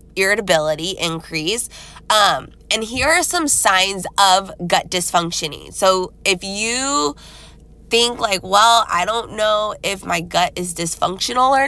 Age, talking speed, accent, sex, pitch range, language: 20-39, 135 wpm, American, female, 185-235 Hz, English